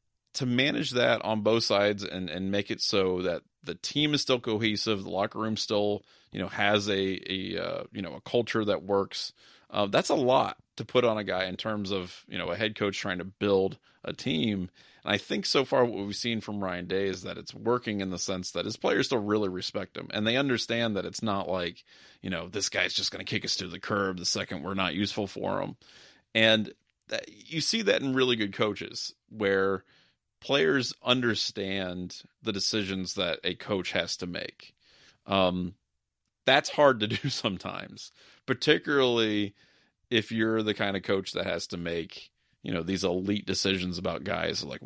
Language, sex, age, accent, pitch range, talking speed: English, male, 30-49, American, 95-110 Hz, 200 wpm